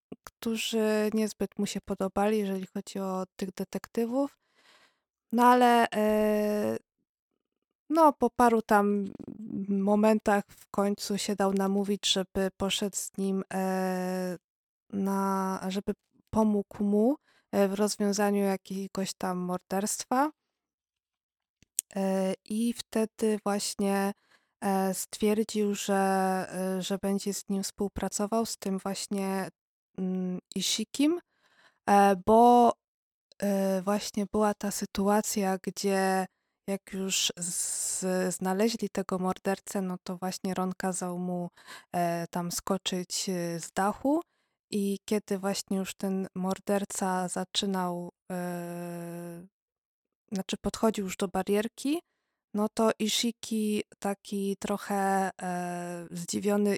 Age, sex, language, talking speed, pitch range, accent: 20-39, female, Polish, 95 wpm, 190-210 Hz, native